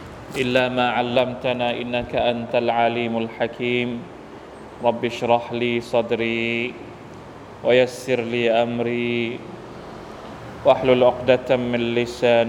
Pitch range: 115-125 Hz